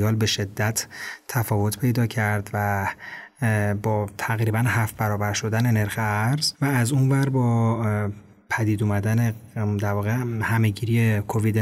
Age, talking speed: 30-49, 130 wpm